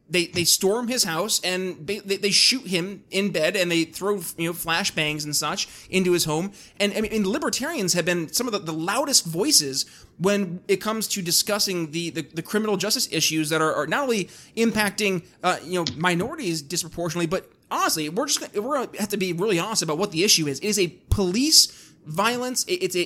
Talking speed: 205 wpm